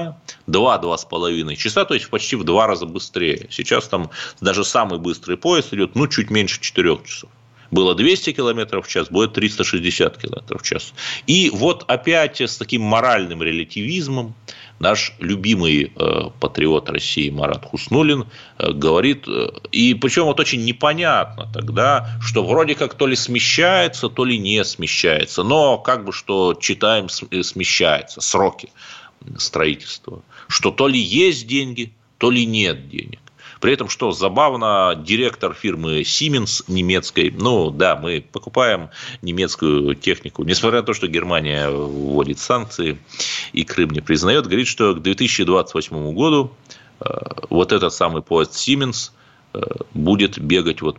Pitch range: 85-130 Hz